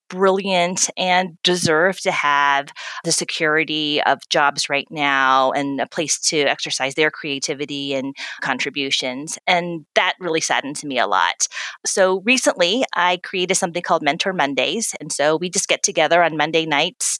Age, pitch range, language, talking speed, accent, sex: 30-49, 145-180 Hz, English, 155 wpm, American, female